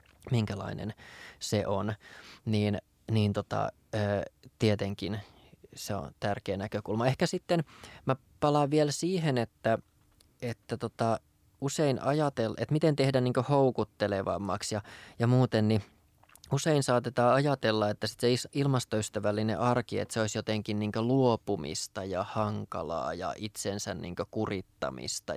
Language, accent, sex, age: Finnish, native, male, 20-39